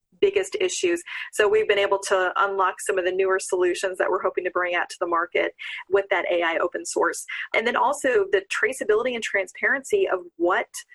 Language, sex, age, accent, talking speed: English, female, 30-49, American, 195 wpm